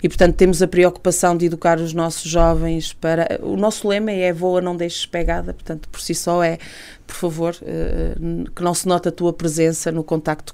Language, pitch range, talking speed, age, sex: Portuguese, 155-175 Hz, 200 wpm, 30-49, female